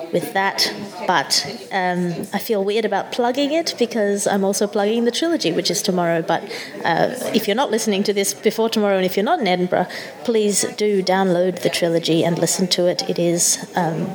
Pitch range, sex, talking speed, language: 180-210 Hz, female, 195 wpm, English